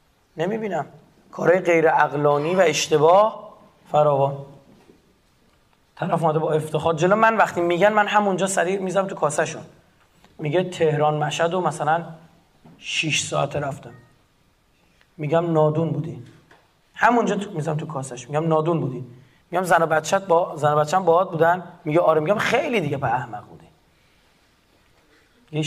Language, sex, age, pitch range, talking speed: Persian, male, 30-49, 150-185 Hz, 130 wpm